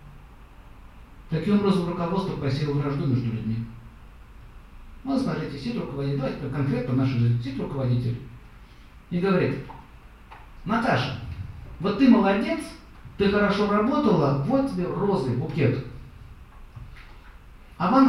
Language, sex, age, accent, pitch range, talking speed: Russian, male, 50-69, native, 110-180 Hz, 100 wpm